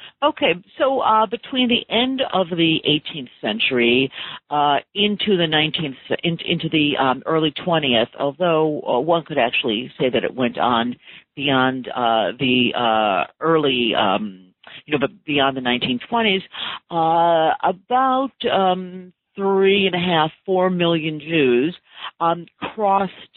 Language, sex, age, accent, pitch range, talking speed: English, female, 50-69, American, 130-170 Hz, 140 wpm